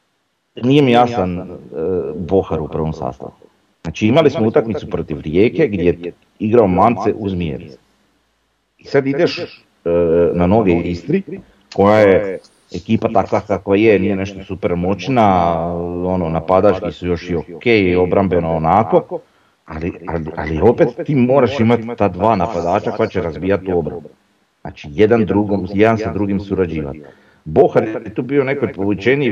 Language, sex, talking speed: Croatian, male, 145 wpm